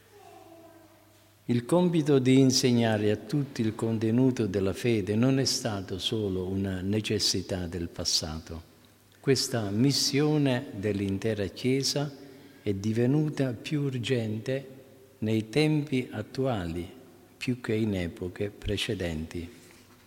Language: Italian